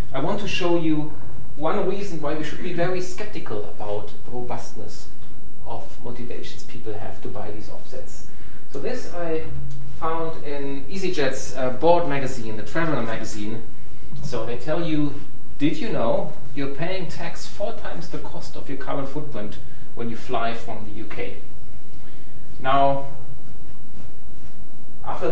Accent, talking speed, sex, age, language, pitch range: German, 145 wpm, male, 30-49, English, 120-155 Hz